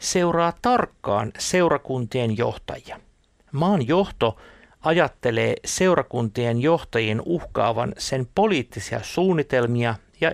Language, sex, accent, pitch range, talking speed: Finnish, male, native, 115-175 Hz, 80 wpm